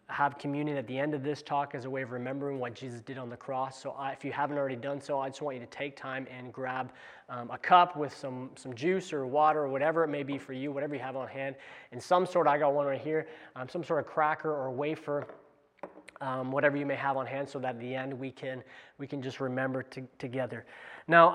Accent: American